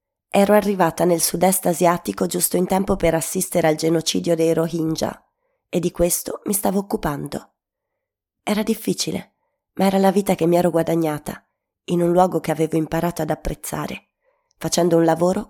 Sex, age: female, 20-39